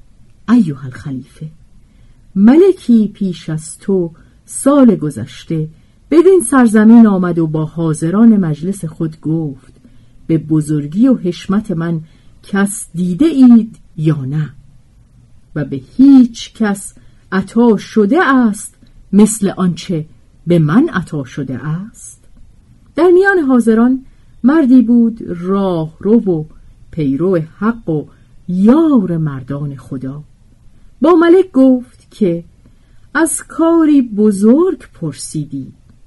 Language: Persian